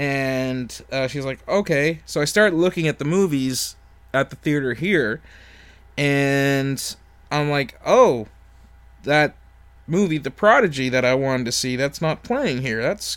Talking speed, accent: 155 wpm, American